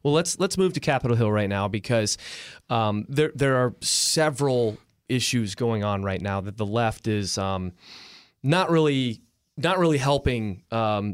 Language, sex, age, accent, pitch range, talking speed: English, male, 30-49, American, 105-145 Hz, 165 wpm